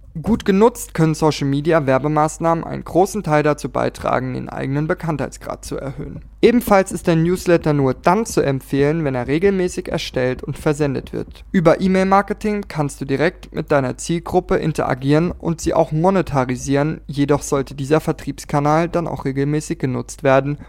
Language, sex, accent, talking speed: German, male, German, 155 wpm